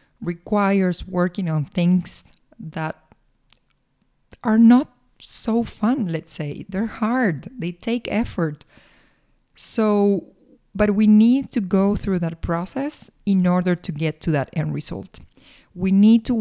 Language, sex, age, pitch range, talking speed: English, female, 20-39, 175-225 Hz, 130 wpm